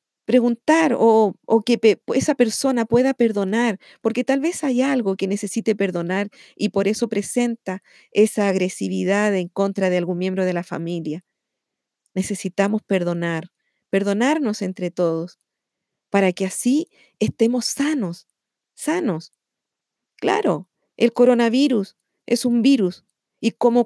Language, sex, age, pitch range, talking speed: Spanish, female, 40-59, 180-245 Hz, 125 wpm